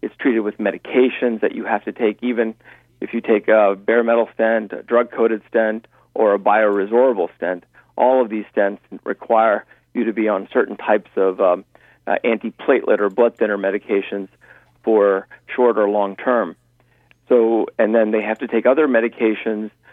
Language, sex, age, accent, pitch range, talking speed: English, male, 50-69, American, 105-120 Hz, 170 wpm